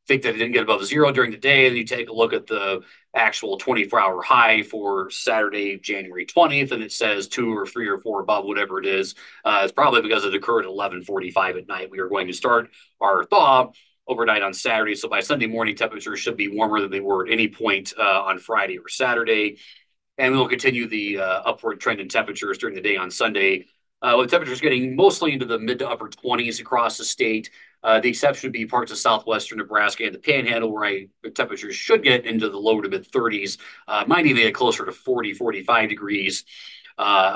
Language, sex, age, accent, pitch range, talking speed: English, male, 30-49, American, 105-150 Hz, 215 wpm